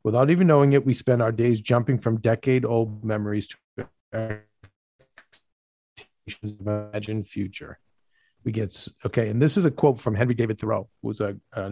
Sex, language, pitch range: male, English, 105-130 Hz